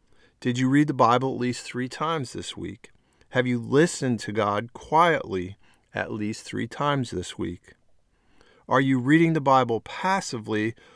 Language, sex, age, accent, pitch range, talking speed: English, male, 50-69, American, 110-135 Hz, 160 wpm